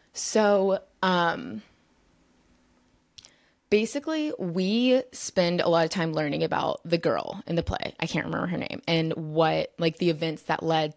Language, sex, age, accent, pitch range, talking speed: English, female, 20-39, American, 160-195 Hz, 155 wpm